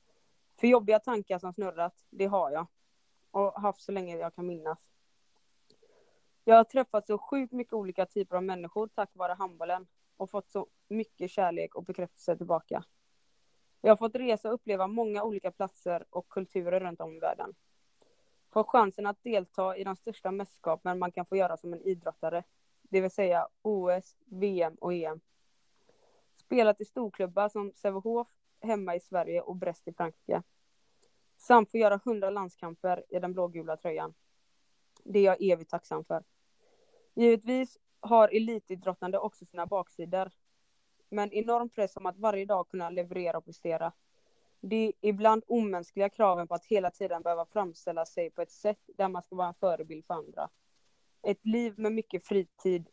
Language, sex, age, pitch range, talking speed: Swedish, female, 20-39, 180-220 Hz, 165 wpm